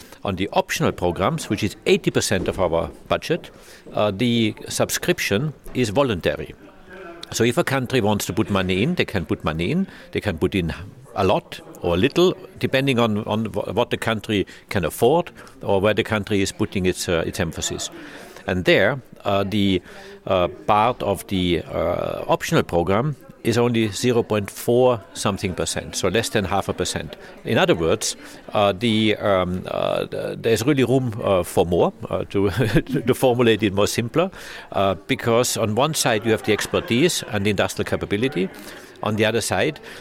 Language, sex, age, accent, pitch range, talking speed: Danish, male, 50-69, German, 100-125 Hz, 170 wpm